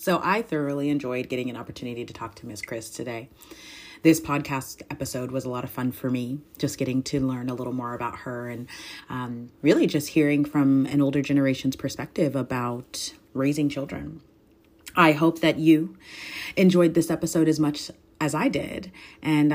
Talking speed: 180 wpm